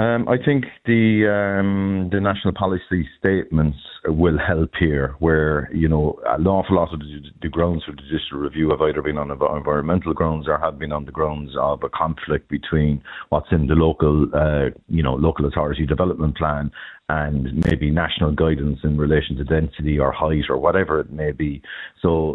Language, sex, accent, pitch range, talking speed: English, male, Irish, 75-85 Hz, 185 wpm